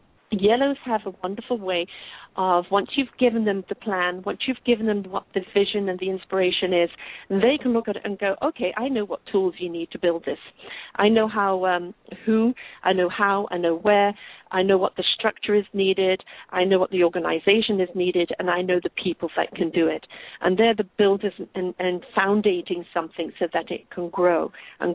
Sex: female